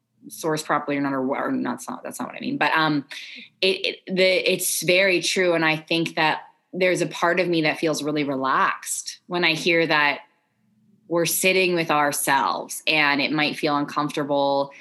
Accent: American